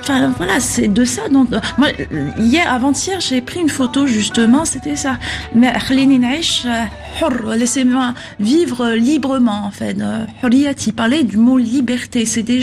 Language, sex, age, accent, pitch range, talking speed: French, female, 30-49, French, 220-270 Hz, 145 wpm